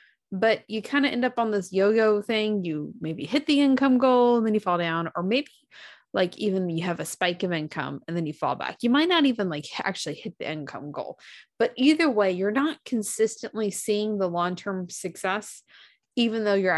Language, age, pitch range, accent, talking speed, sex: English, 20-39, 185-245 Hz, American, 210 wpm, female